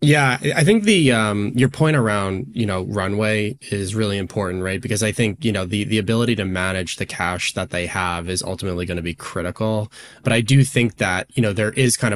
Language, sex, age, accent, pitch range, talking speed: English, male, 10-29, American, 95-115 Hz, 225 wpm